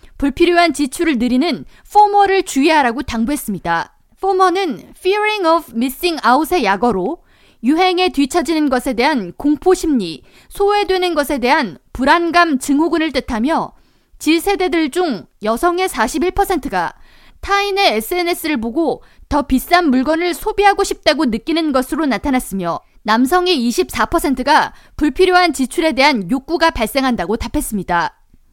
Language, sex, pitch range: Korean, female, 255-355 Hz